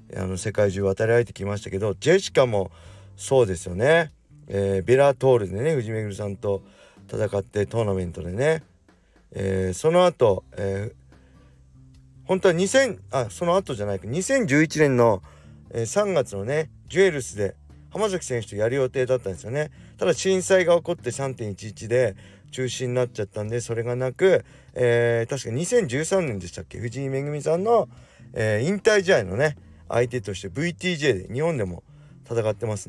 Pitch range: 100-150 Hz